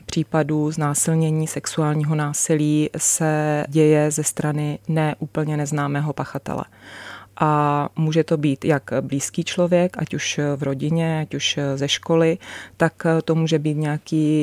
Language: Czech